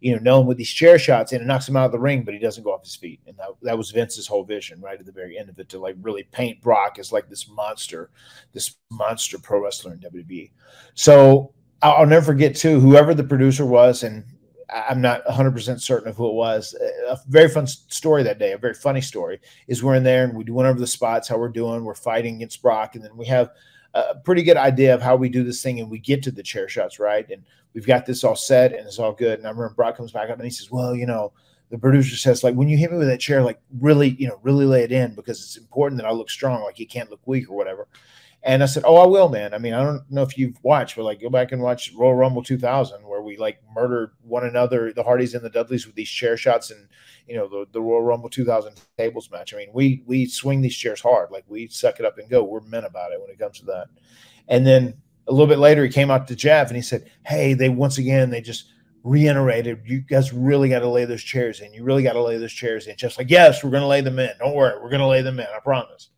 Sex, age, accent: male, 40-59, American